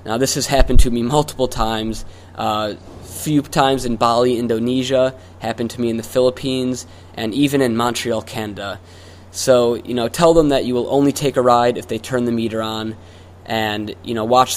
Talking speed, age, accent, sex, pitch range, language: 195 wpm, 20-39, American, male, 105-125 Hz, English